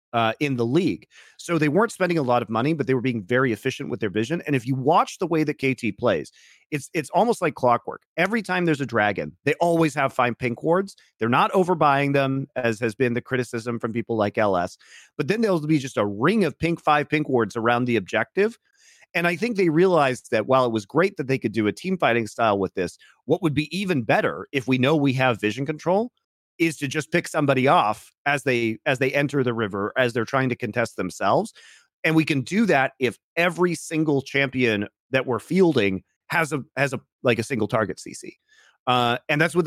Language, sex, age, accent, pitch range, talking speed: English, male, 40-59, American, 125-170 Hz, 225 wpm